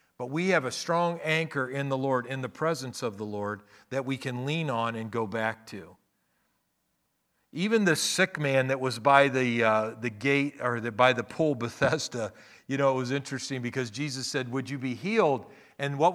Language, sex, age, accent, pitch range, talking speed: English, male, 50-69, American, 135-185 Hz, 205 wpm